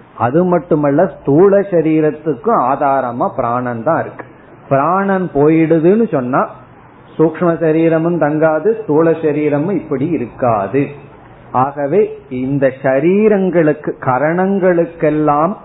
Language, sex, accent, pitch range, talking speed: Tamil, male, native, 125-165 Hz, 85 wpm